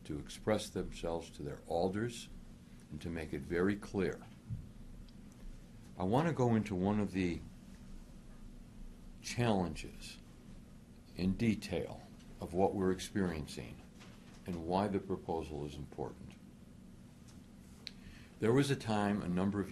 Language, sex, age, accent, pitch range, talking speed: English, male, 60-79, American, 80-105 Hz, 120 wpm